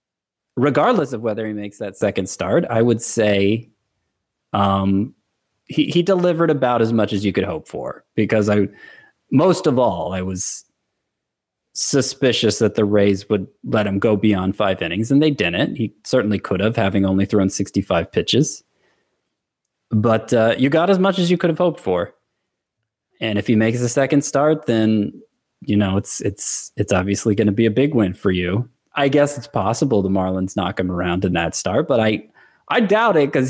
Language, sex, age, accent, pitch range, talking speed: English, male, 30-49, American, 100-120 Hz, 190 wpm